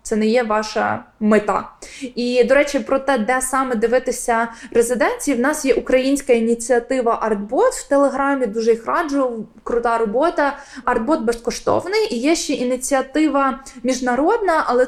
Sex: female